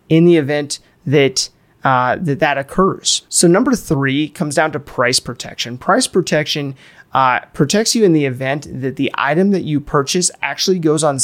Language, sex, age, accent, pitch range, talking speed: English, male, 30-49, American, 135-165 Hz, 175 wpm